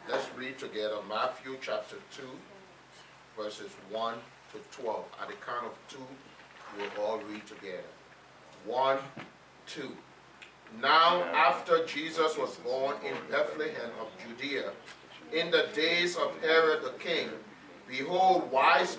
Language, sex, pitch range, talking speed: English, male, 145-195 Hz, 125 wpm